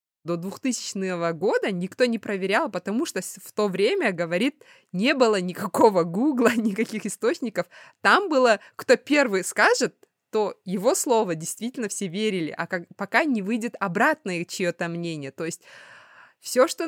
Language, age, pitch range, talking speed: Russian, 20-39, 180-255 Hz, 140 wpm